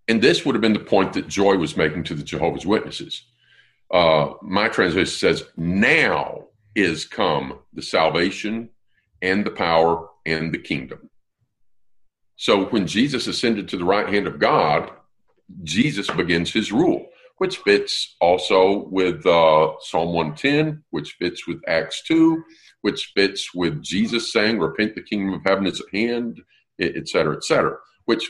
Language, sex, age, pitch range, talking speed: English, male, 50-69, 80-115 Hz, 155 wpm